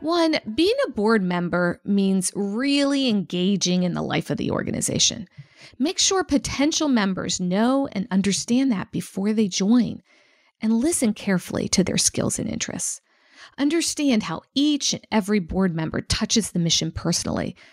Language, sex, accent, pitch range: English, female, American, 180-245 Hz